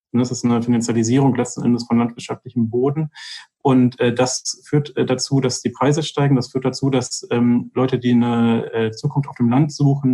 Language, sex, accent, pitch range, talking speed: German, male, German, 115-130 Hz, 195 wpm